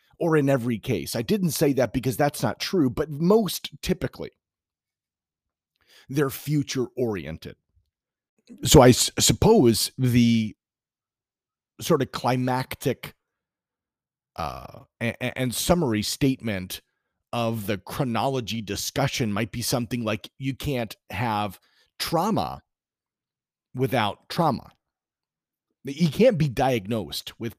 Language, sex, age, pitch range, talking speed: English, male, 40-59, 110-140 Hz, 100 wpm